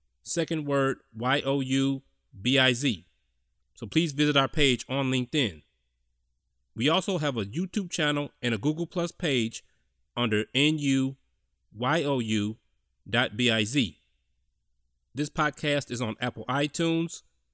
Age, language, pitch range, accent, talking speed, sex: 30-49, English, 105-150 Hz, American, 105 wpm, male